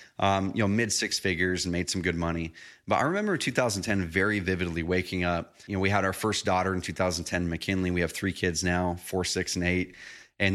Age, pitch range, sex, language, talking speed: 30-49, 90-110 Hz, male, English, 220 wpm